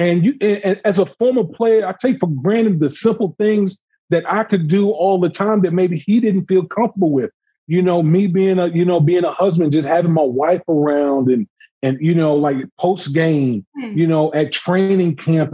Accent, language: American, English